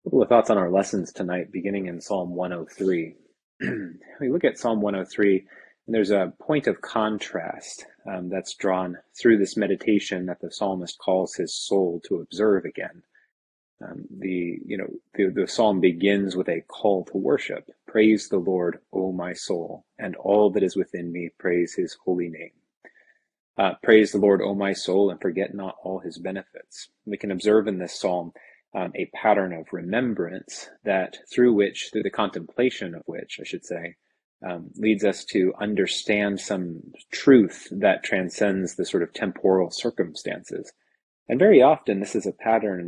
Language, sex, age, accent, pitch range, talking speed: English, male, 30-49, American, 90-105 Hz, 170 wpm